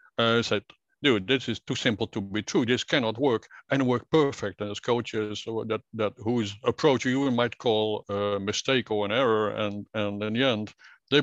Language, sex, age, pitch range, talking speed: English, male, 60-79, 105-135 Hz, 210 wpm